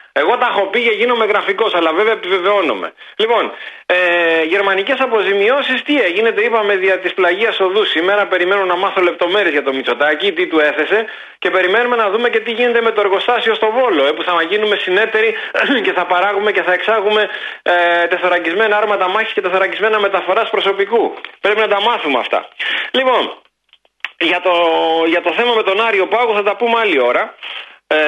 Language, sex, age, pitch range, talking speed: Greek, male, 30-49, 175-240 Hz, 170 wpm